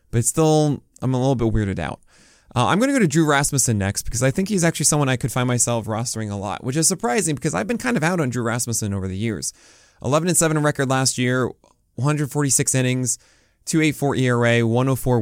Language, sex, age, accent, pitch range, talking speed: English, male, 20-39, American, 105-140 Hz, 205 wpm